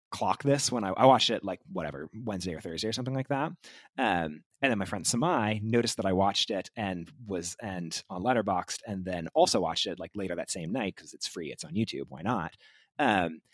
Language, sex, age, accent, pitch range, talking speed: English, male, 30-49, American, 95-135 Hz, 225 wpm